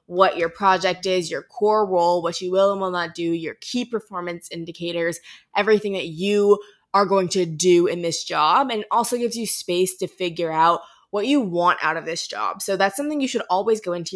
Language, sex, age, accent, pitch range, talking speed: English, female, 20-39, American, 175-215 Hz, 215 wpm